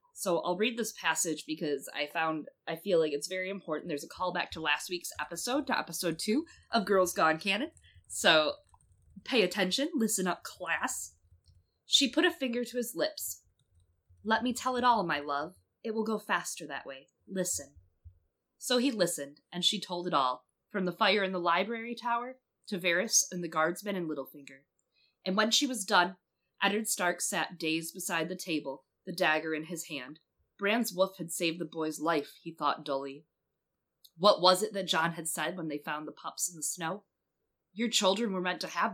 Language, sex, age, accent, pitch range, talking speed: English, female, 20-39, American, 155-210 Hz, 195 wpm